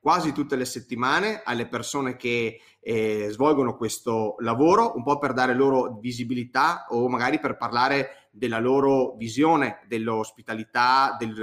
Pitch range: 115-145 Hz